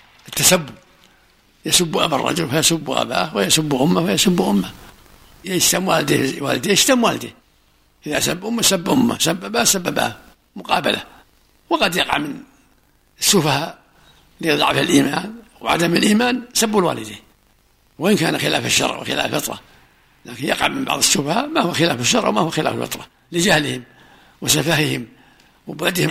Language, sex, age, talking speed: Arabic, male, 60-79, 130 wpm